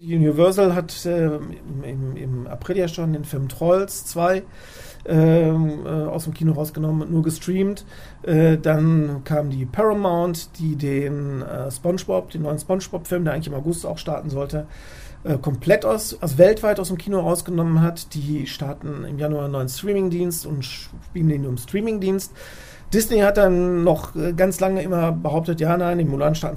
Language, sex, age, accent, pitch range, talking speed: German, male, 40-59, German, 150-180 Hz, 170 wpm